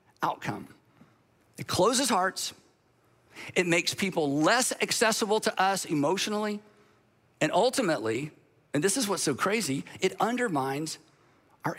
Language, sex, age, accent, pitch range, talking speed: English, male, 50-69, American, 165-225 Hz, 115 wpm